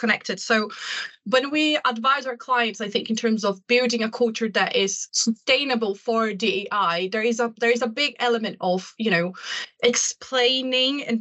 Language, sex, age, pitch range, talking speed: English, female, 20-39, 215-250 Hz, 175 wpm